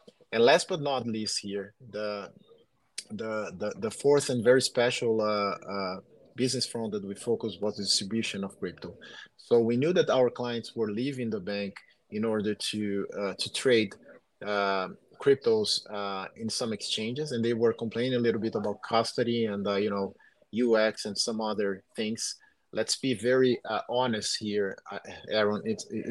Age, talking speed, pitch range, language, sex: 30-49, 170 wpm, 105-125 Hz, English, male